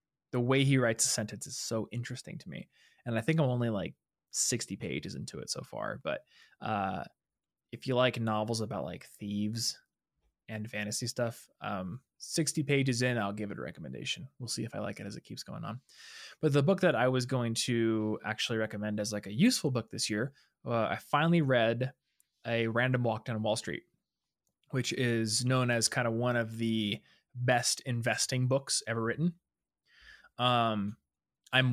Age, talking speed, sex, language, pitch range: 20-39, 185 wpm, male, English, 110-130 Hz